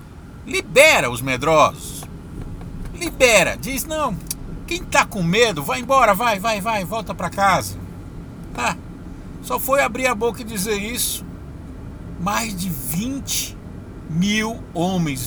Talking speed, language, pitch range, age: 125 wpm, Portuguese, 185-270 Hz, 60-79